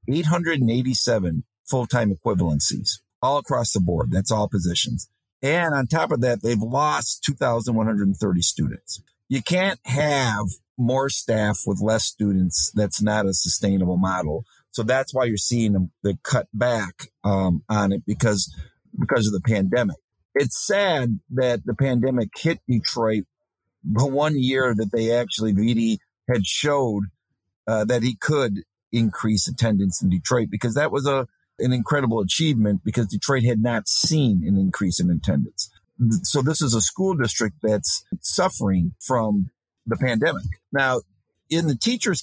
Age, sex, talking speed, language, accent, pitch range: 50-69, male, 150 wpm, English, American, 100-130 Hz